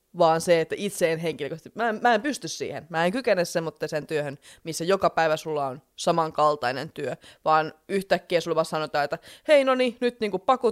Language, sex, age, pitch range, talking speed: Finnish, female, 20-39, 155-195 Hz, 190 wpm